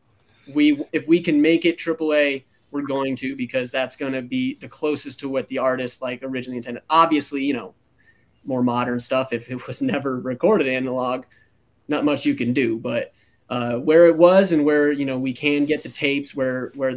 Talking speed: 200 wpm